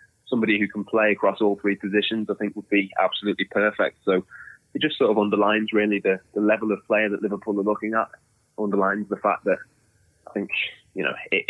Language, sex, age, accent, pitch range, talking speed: English, male, 20-39, British, 90-105 Hz, 210 wpm